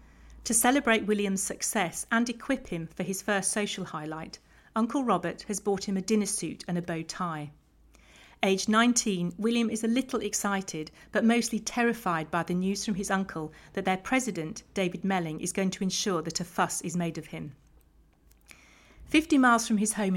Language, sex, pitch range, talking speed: English, female, 170-215 Hz, 180 wpm